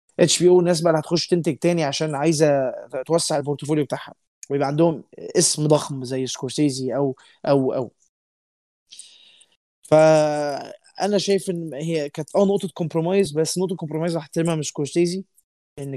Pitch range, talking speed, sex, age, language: 135-160 Hz, 140 wpm, male, 20-39, Arabic